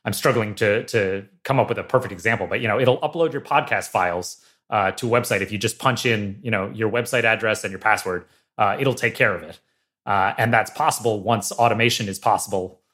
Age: 30-49